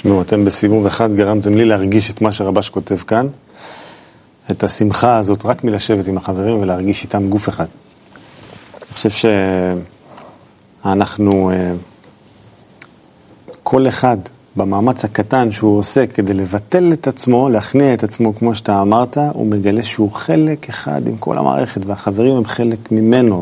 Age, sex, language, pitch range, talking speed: 40-59, male, Hebrew, 100-115 Hz, 140 wpm